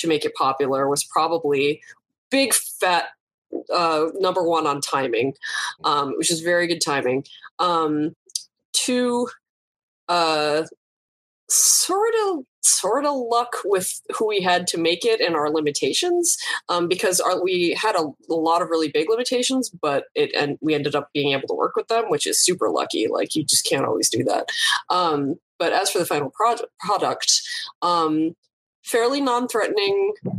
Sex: female